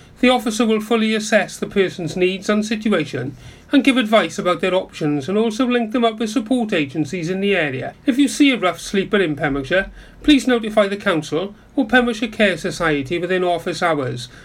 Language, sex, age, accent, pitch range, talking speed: English, male, 40-59, British, 160-220 Hz, 190 wpm